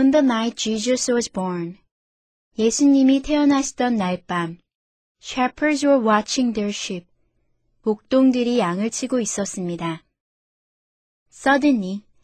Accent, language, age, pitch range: native, Korean, 20-39, 190-255 Hz